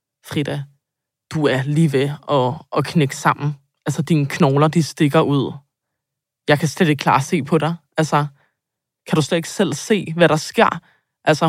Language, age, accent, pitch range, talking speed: Danish, 20-39, native, 145-180 Hz, 170 wpm